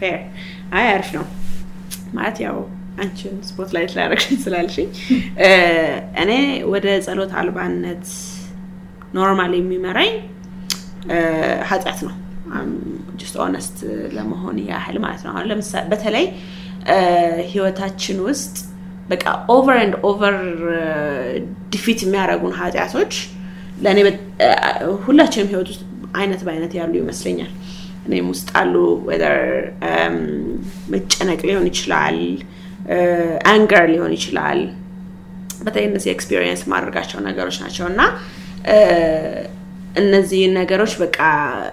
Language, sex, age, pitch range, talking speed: Amharic, female, 20-39, 170-195 Hz, 90 wpm